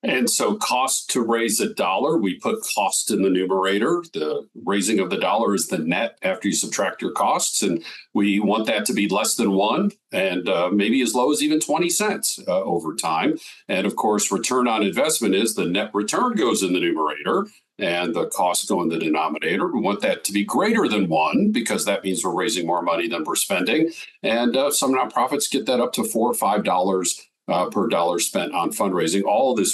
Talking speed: 215 wpm